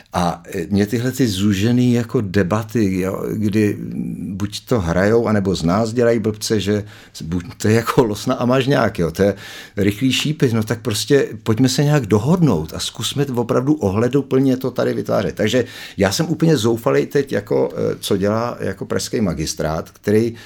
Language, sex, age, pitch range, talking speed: Czech, male, 50-69, 95-125 Hz, 170 wpm